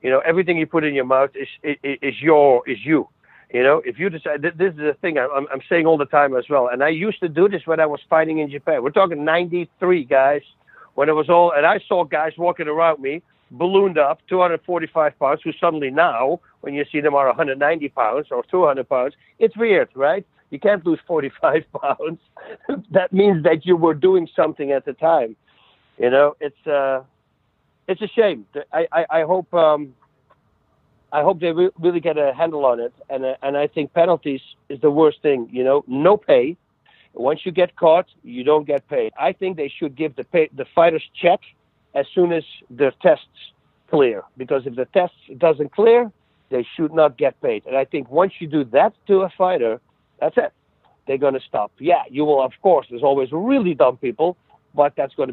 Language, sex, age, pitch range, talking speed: English, male, 60-79, 140-180 Hz, 210 wpm